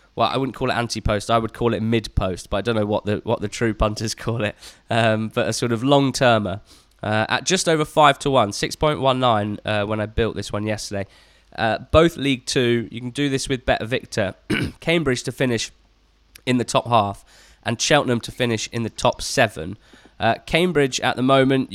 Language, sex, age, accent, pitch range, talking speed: English, male, 20-39, British, 105-125 Hz, 205 wpm